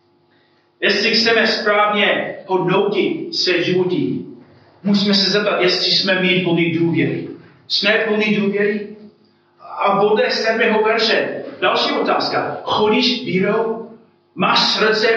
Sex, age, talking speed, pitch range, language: male, 40-59, 110 wpm, 175-215 Hz, Czech